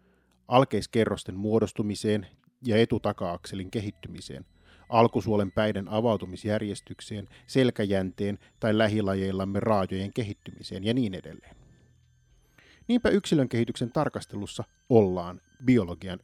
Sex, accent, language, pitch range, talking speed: male, native, Finnish, 90-120 Hz, 85 wpm